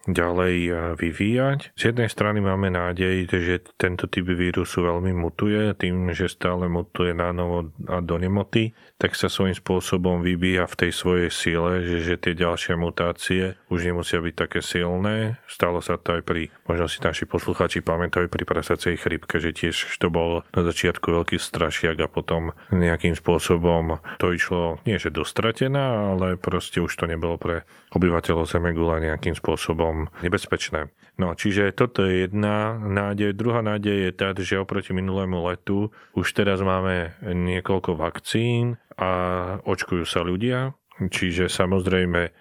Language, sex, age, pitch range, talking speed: Slovak, male, 30-49, 85-100 Hz, 150 wpm